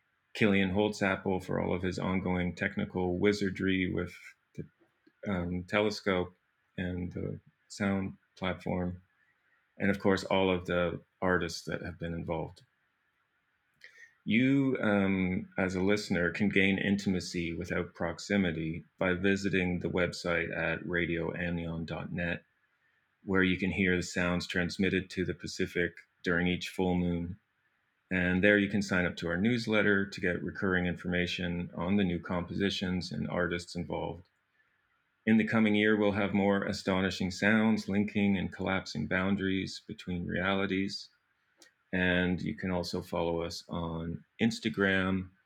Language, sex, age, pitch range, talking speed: English, male, 30-49, 90-100 Hz, 135 wpm